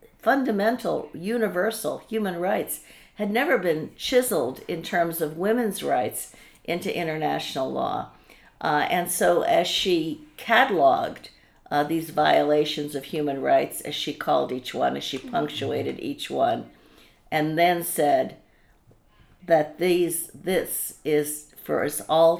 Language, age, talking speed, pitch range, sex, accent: English, 50-69, 130 wpm, 150-185 Hz, female, American